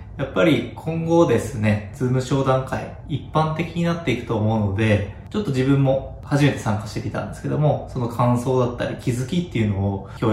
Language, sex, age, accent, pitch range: Japanese, male, 20-39, native, 110-150 Hz